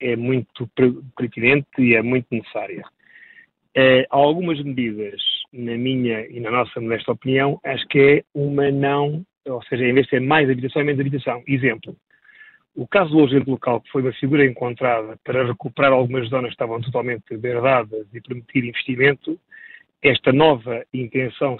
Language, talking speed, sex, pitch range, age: Portuguese, 160 wpm, male, 120-140 Hz, 40-59